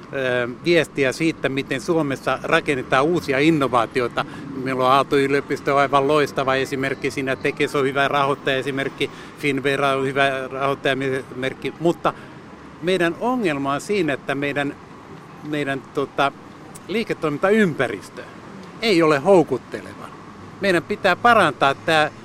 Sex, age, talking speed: male, 60-79, 110 wpm